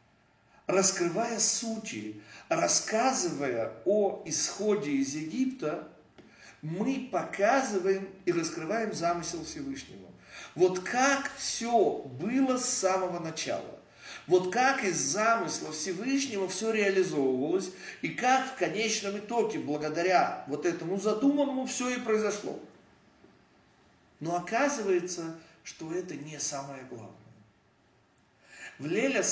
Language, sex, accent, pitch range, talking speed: Russian, male, native, 150-230 Hz, 100 wpm